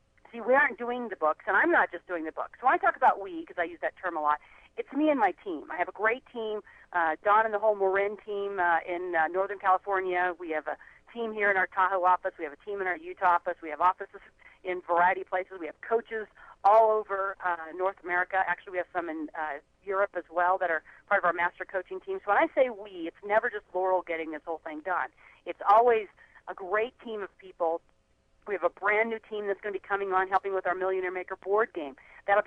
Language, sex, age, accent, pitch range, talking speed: English, female, 40-59, American, 175-220 Hz, 255 wpm